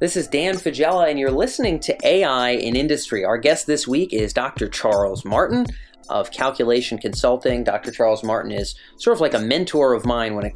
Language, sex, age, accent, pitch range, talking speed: English, male, 30-49, American, 110-150 Hz, 200 wpm